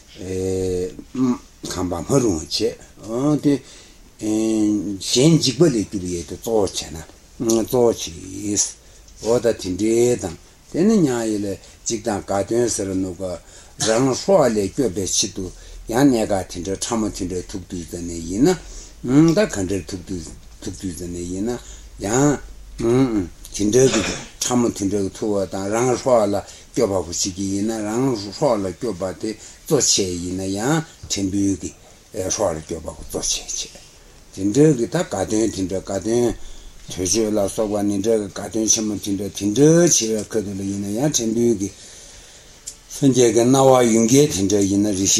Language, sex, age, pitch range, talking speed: Italian, male, 60-79, 90-115 Hz, 75 wpm